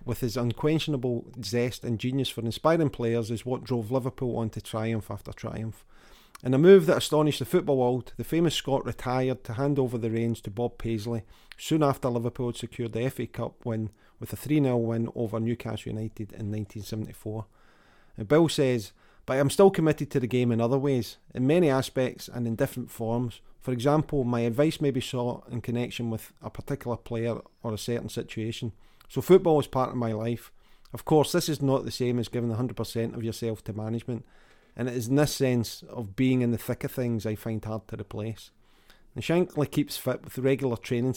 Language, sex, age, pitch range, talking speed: English, male, 40-59, 115-130 Hz, 200 wpm